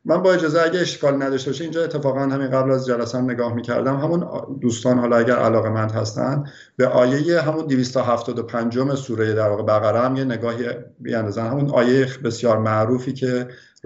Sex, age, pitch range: male, 50-69, 110-140 Hz